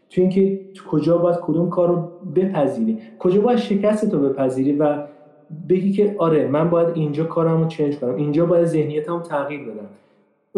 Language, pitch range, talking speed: Persian, 145-190 Hz, 175 wpm